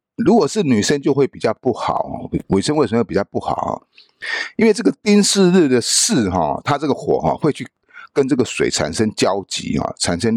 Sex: male